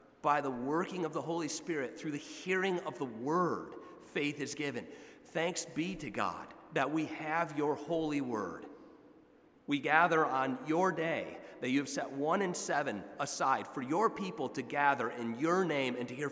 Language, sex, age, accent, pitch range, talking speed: English, male, 40-59, American, 135-165 Hz, 185 wpm